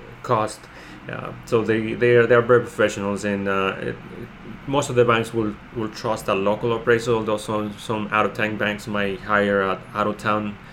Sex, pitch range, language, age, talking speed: male, 100-115 Hz, English, 30-49, 175 wpm